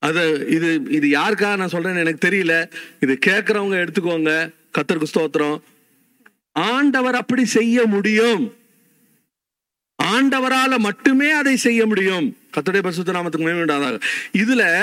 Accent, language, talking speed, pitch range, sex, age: native, Tamil, 100 wpm, 180-255 Hz, male, 50-69